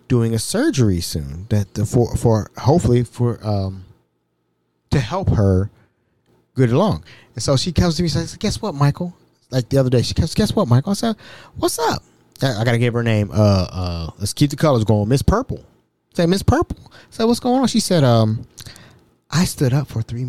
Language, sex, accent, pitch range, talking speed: English, male, American, 105-140 Hz, 200 wpm